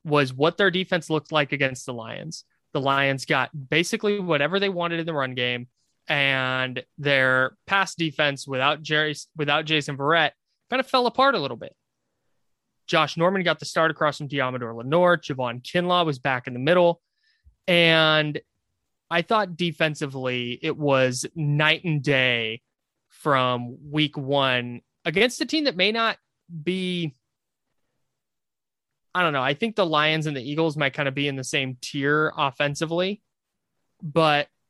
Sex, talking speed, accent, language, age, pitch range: male, 155 wpm, American, English, 20-39, 130-165 Hz